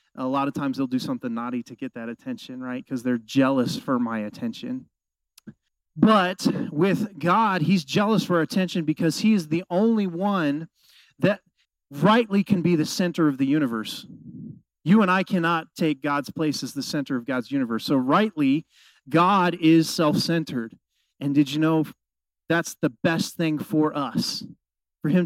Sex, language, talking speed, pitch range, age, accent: male, English, 170 wpm, 145-195 Hz, 30-49, American